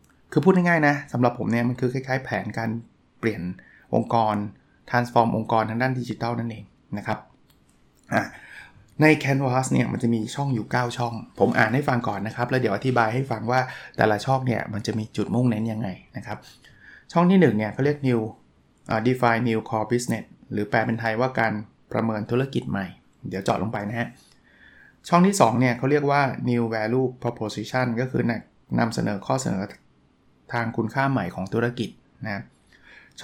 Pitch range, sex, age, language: 110-130 Hz, male, 20-39, Thai